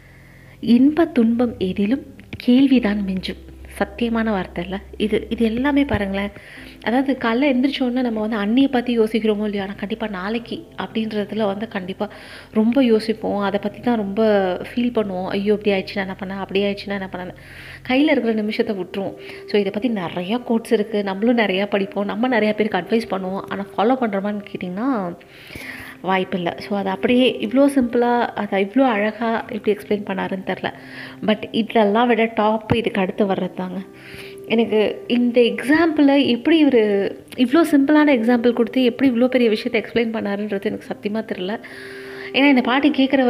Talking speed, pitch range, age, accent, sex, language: 150 wpm, 200-245 Hz, 30-49, native, female, Tamil